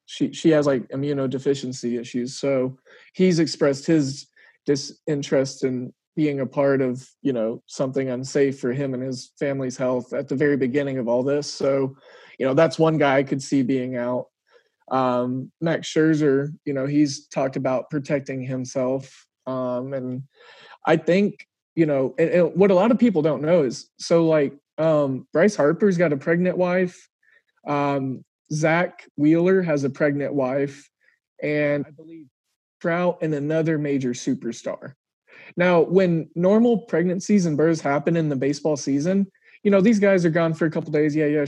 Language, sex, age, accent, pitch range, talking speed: English, male, 30-49, American, 135-170 Hz, 170 wpm